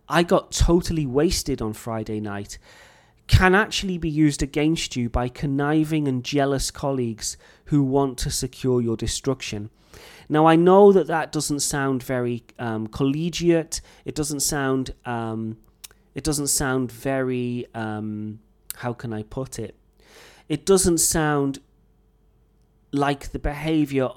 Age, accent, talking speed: 30-49, British, 135 wpm